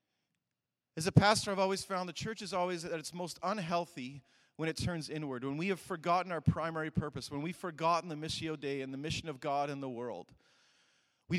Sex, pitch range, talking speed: male, 150-185 Hz, 210 wpm